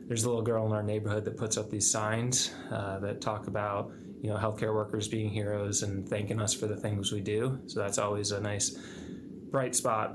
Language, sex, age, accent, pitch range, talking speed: English, male, 20-39, American, 105-110 Hz, 220 wpm